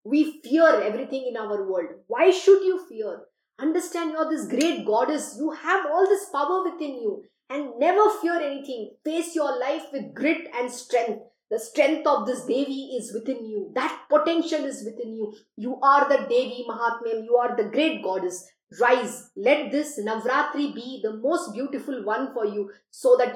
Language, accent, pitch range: English, Indian, 215-310 Hz